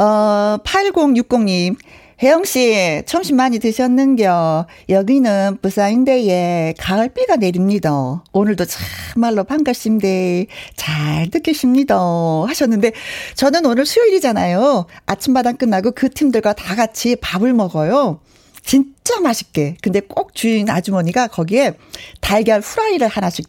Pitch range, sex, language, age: 175-250 Hz, female, Korean, 40-59